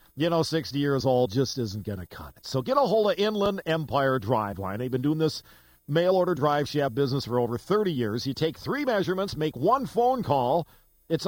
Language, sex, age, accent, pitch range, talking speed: English, male, 50-69, American, 125-180 Hz, 220 wpm